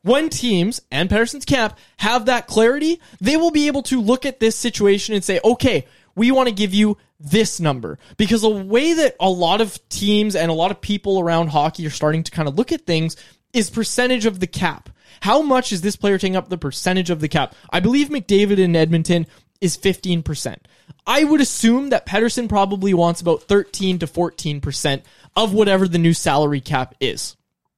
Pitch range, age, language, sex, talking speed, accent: 165-230 Hz, 20-39, English, male, 200 wpm, American